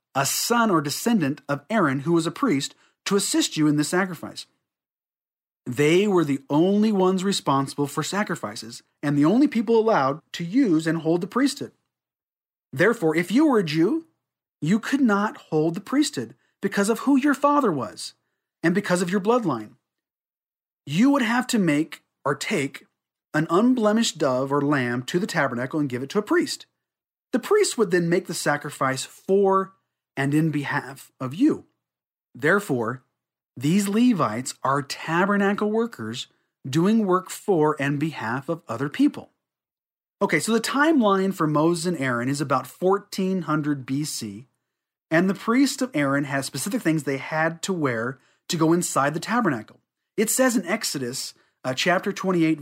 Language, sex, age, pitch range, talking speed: English, male, 40-59, 145-210 Hz, 160 wpm